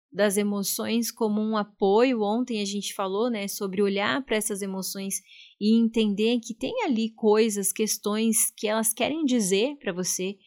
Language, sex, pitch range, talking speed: Portuguese, female, 195-230 Hz, 160 wpm